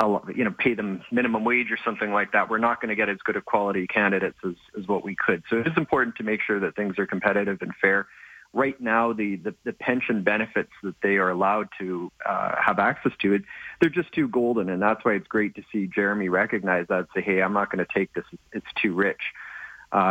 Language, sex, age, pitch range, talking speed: English, male, 40-59, 95-120 Hz, 240 wpm